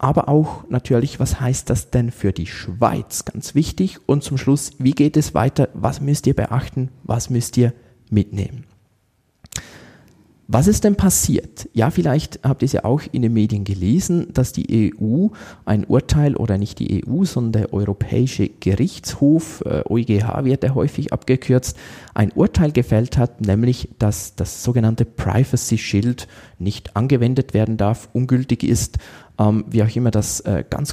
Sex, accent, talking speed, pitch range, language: male, German, 155 wpm, 110-135 Hz, German